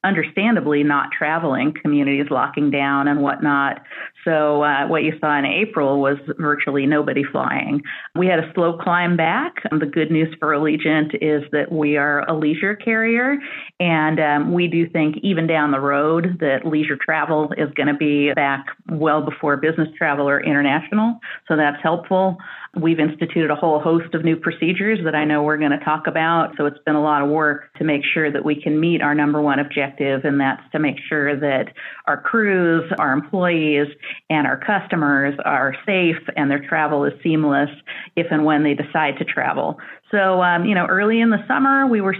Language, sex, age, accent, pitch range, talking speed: English, female, 40-59, American, 145-180 Hz, 190 wpm